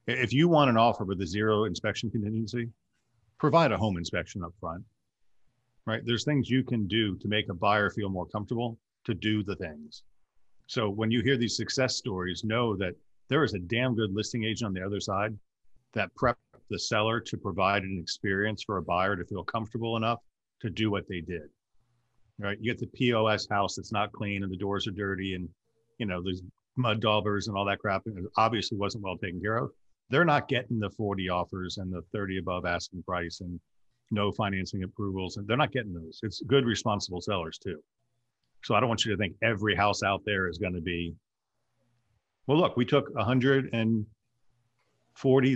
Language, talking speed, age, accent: English, 195 wpm, 50-69, American